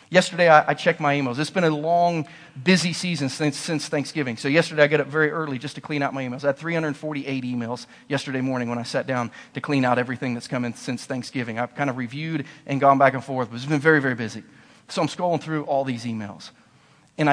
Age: 40-59